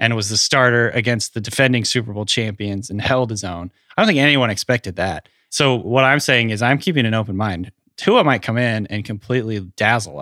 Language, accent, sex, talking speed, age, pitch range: English, American, male, 215 wpm, 20-39, 105-125 Hz